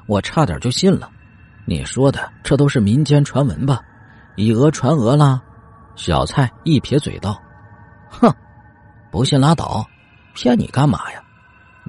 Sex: male